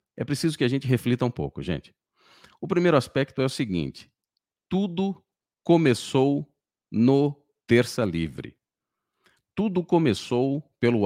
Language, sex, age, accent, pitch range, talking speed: Portuguese, male, 50-69, Brazilian, 110-150 Hz, 125 wpm